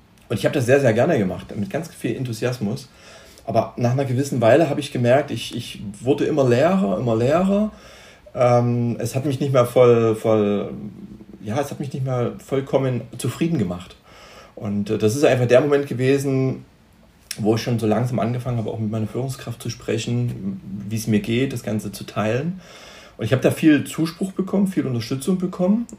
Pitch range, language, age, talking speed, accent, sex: 110-140 Hz, German, 30-49, 190 wpm, German, male